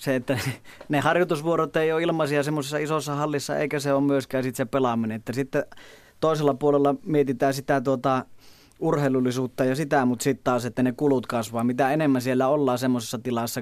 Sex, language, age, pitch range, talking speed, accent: male, Finnish, 30-49, 120-140 Hz, 170 wpm, native